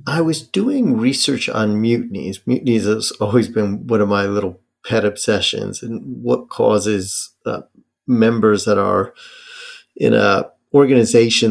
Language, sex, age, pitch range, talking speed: English, male, 40-59, 105-125 Hz, 135 wpm